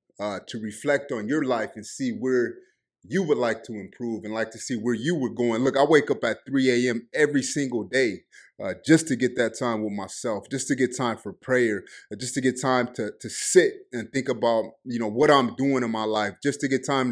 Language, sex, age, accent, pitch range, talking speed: English, male, 30-49, American, 115-140 Hz, 240 wpm